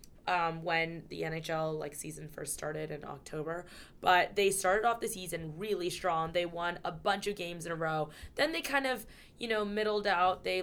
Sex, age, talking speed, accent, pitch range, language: female, 20-39, 205 wpm, American, 165-205 Hz, English